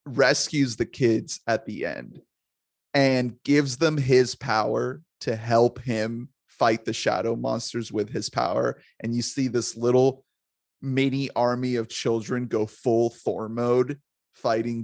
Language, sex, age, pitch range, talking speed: English, male, 30-49, 115-155 Hz, 140 wpm